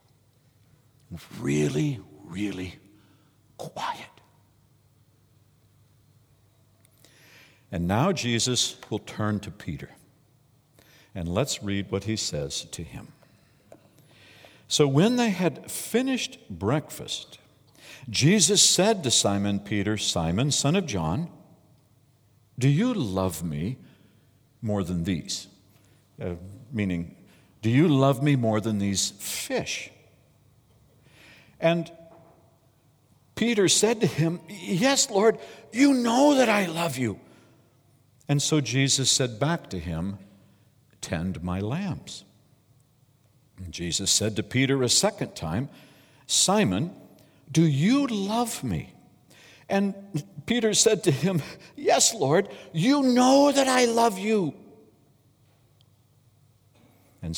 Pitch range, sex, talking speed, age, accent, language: 105-155 Hz, male, 105 wpm, 60-79, American, English